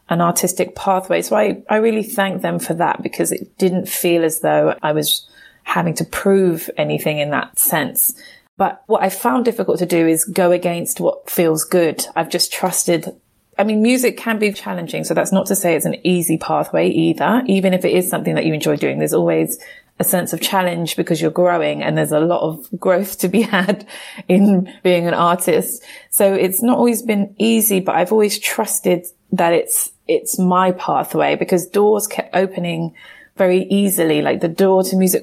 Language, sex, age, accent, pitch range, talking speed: English, female, 20-39, British, 170-195 Hz, 195 wpm